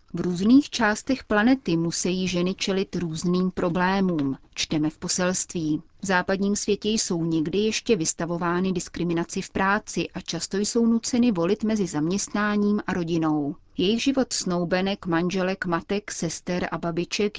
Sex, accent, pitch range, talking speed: female, native, 170-205 Hz, 135 wpm